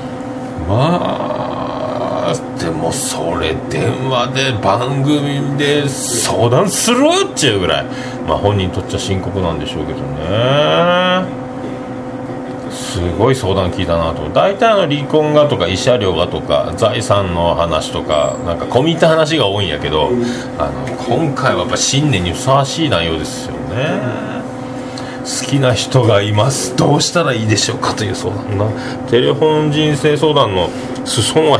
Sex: male